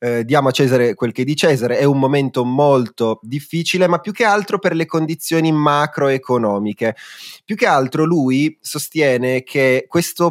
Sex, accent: male, native